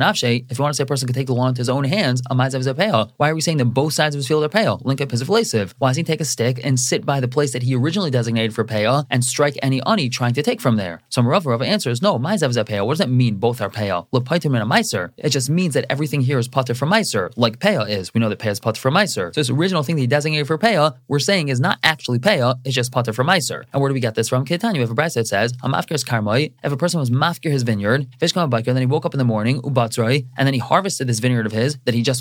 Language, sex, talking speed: English, male, 285 wpm